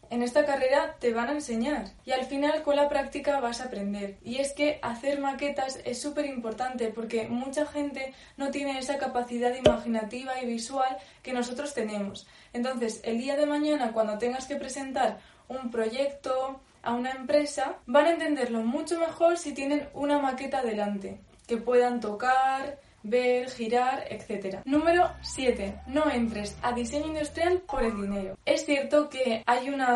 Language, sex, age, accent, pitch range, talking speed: Spanish, female, 20-39, Spanish, 235-280 Hz, 165 wpm